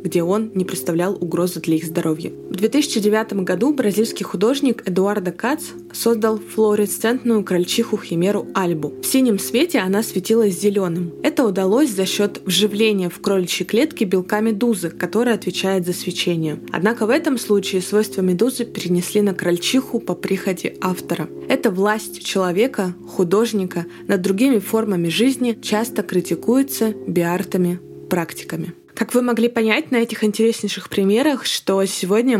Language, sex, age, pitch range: Russian, female, 20-39, 185-225 Hz